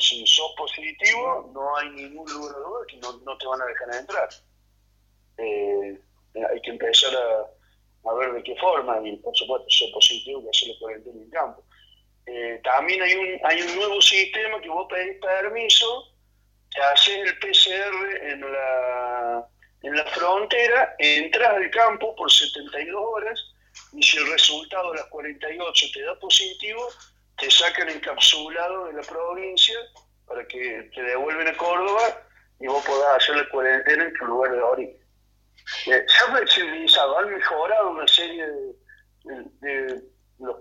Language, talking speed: Spanish, 160 wpm